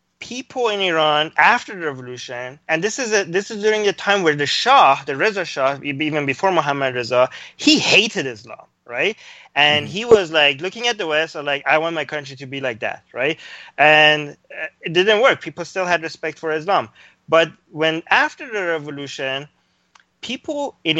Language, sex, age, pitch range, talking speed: English, male, 20-39, 145-185 Hz, 190 wpm